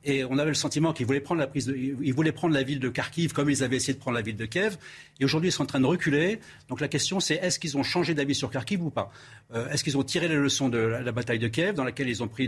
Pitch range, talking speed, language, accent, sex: 130-160 Hz, 320 wpm, French, French, male